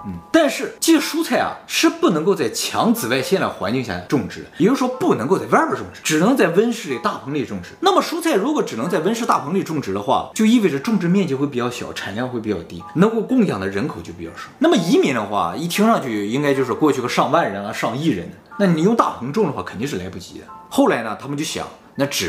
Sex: male